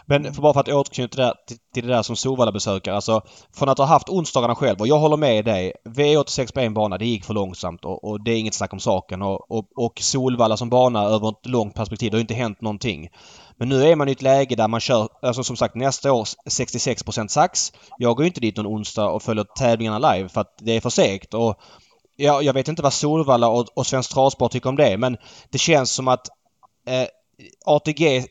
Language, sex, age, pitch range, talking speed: Swedish, male, 20-39, 115-140 Hz, 235 wpm